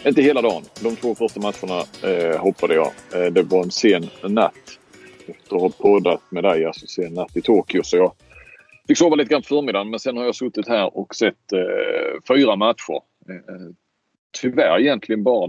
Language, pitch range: Swedish, 90-130 Hz